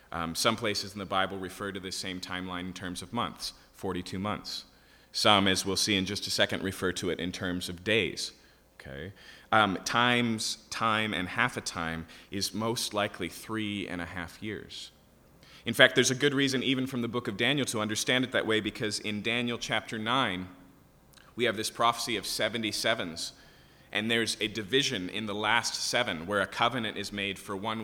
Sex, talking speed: male, 195 wpm